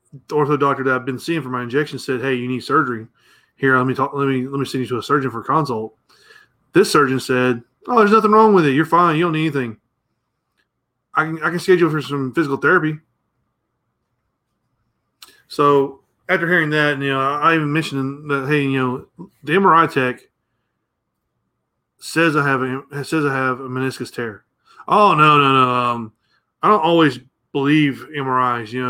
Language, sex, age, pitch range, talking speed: English, male, 20-39, 125-150 Hz, 185 wpm